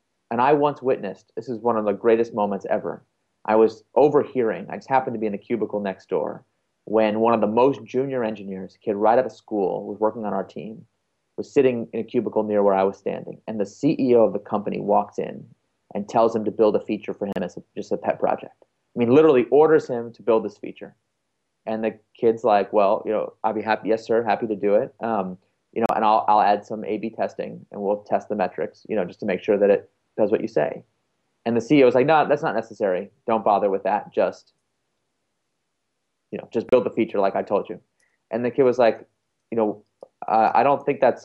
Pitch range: 110-155 Hz